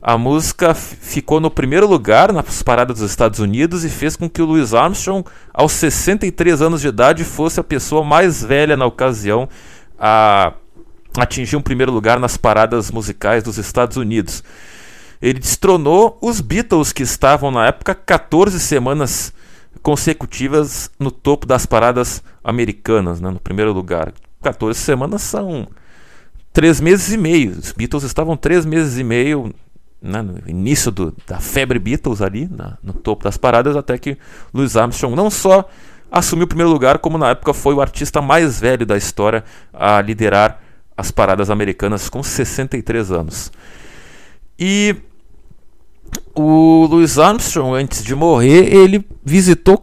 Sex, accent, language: male, Brazilian, Portuguese